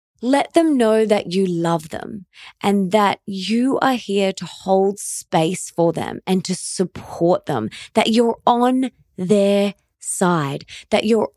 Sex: female